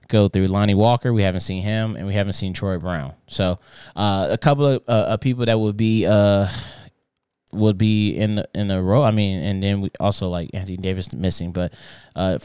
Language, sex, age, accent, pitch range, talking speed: English, male, 20-39, American, 95-105 Hz, 215 wpm